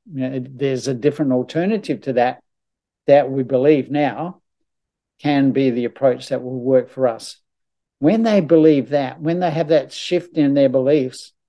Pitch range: 130-165 Hz